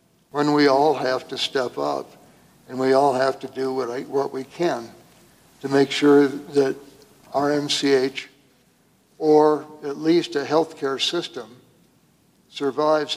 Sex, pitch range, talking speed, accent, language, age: male, 130-145 Hz, 135 wpm, American, English, 60-79